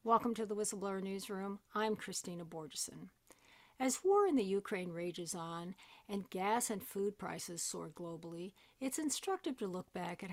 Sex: female